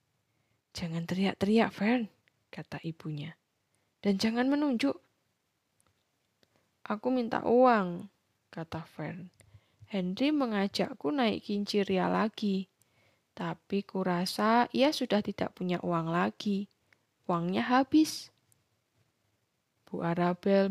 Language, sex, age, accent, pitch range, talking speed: Indonesian, female, 10-29, native, 130-210 Hz, 90 wpm